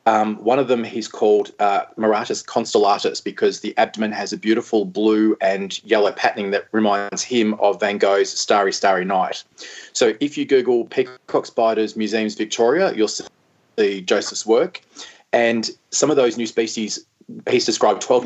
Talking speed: 160 wpm